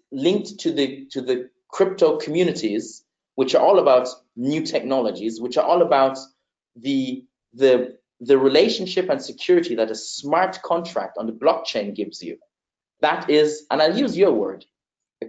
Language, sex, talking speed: English, male, 155 wpm